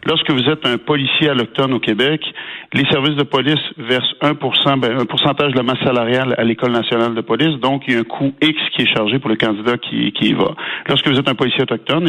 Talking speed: 245 wpm